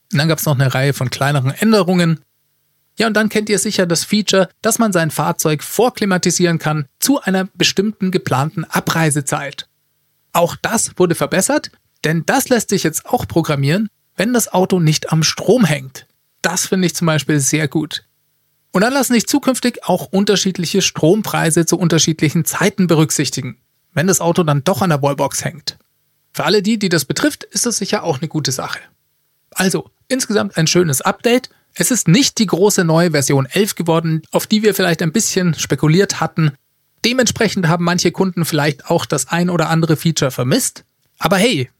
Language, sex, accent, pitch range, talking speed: German, male, German, 150-195 Hz, 180 wpm